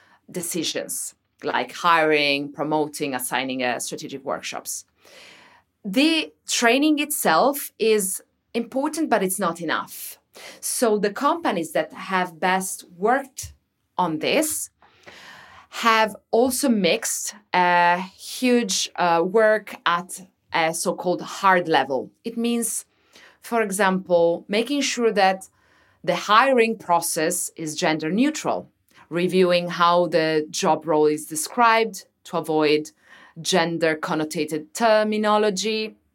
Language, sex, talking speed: English, female, 105 wpm